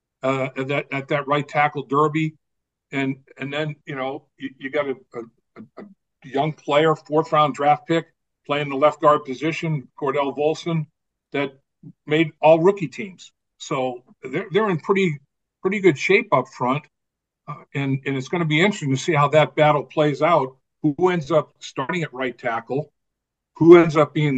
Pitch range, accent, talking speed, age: 135-160 Hz, American, 170 wpm, 50-69